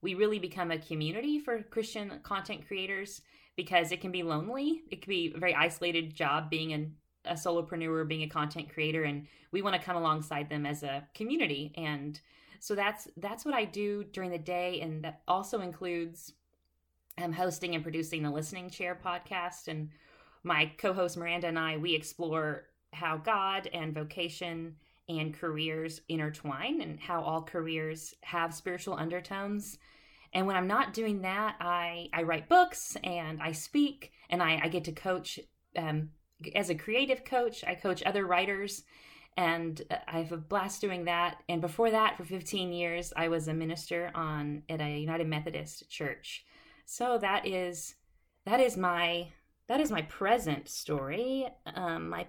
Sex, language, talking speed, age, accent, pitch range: female, English, 170 wpm, 20-39, American, 160-195 Hz